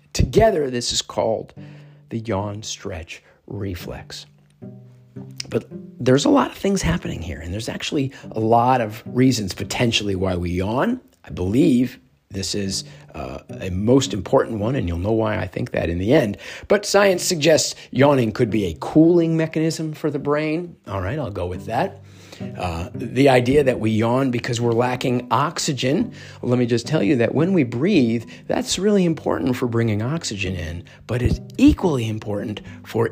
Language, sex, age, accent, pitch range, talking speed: English, male, 50-69, American, 95-140 Hz, 170 wpm